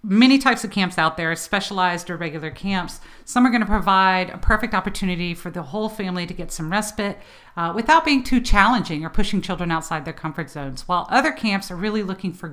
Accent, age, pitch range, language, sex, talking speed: American, 40-59, 165-215 Hz, English, female, 215 wpm